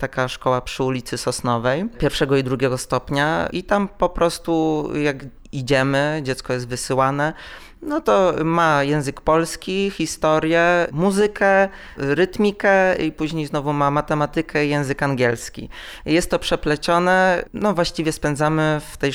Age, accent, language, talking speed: 20-39, native, Polish, 130 wpm